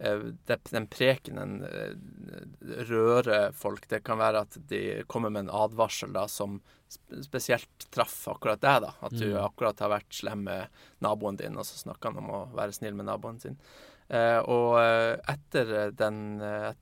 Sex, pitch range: male, 105-120 Hz